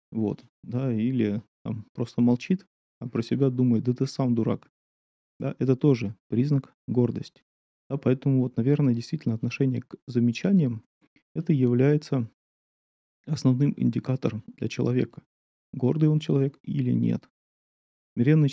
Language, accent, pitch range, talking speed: Russian, native, 120-145 Hz, 125 wpm